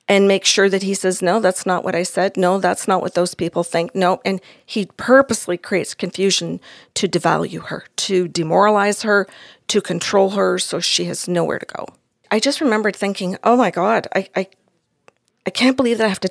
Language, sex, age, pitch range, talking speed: English, female, 40-59, 185-220 Hz, 205 wpm